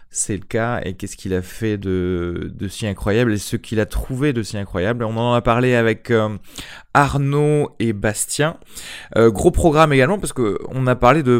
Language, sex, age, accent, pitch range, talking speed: French, male, 20-39, French, 100-120 Hz, 205 wpm